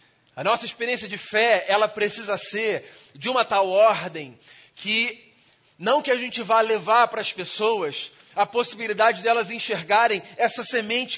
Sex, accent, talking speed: male, Brazilian, 150 wpm